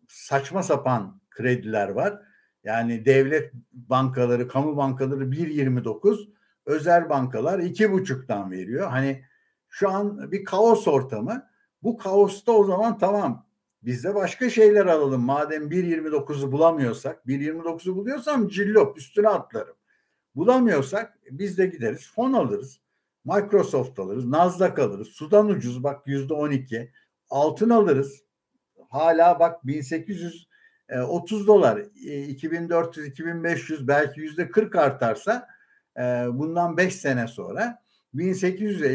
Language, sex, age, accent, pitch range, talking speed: Turkish, male, 60-79, native, 135-205 Hz, 105 wpm